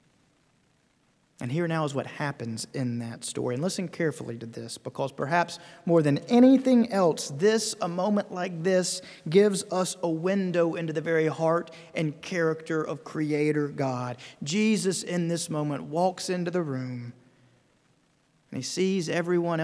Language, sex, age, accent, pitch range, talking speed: English, male, 40-59, American, 130-170 Hz, 155 wpm